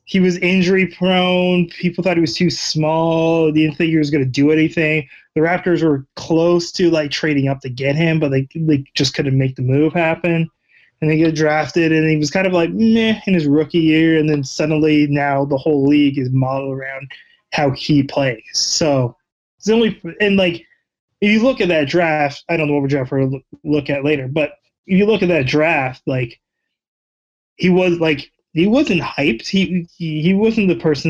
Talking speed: 215 wpm